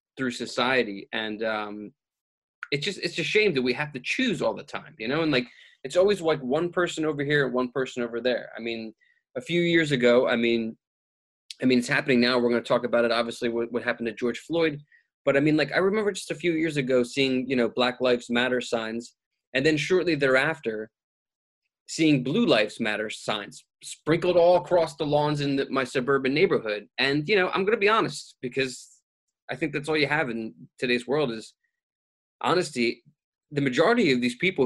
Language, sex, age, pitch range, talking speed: English, male, 20-39, 120-165 Hz, 210 wpm